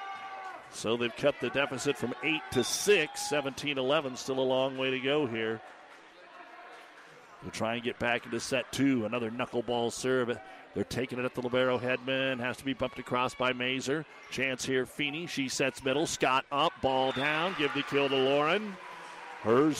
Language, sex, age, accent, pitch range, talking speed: English, male, 50-69, American, 125-150 Hz, 175 wpm